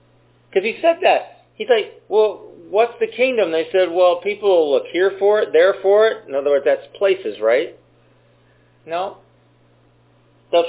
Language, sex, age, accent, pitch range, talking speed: English, male, 40-59, American, 140-215 Hz, 170 wpm